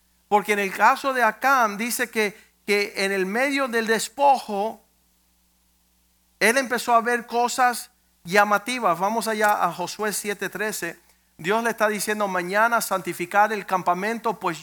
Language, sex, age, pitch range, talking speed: Spanish, male, 50-69, 175-225 Hz, 140 wpm